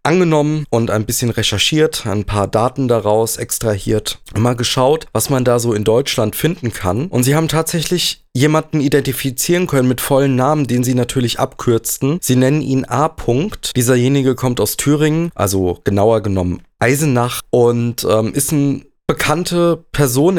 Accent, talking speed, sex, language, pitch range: German, 155 wpm, male, German, 115-145 Hz